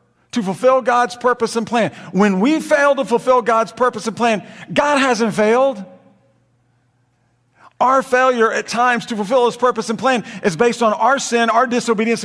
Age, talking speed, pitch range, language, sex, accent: 50-69, 170 wpm, 200-260 Hz, English, male, American